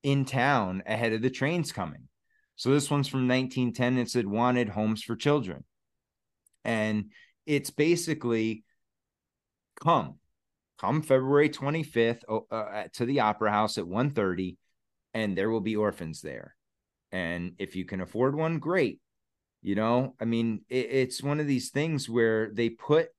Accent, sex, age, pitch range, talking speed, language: American, male, 30-49, 100-130 Hz, 150 wpm, English